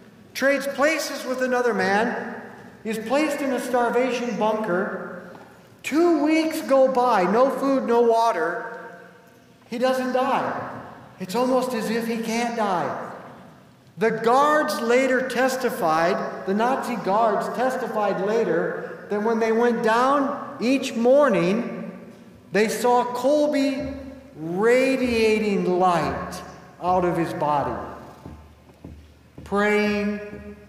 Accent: American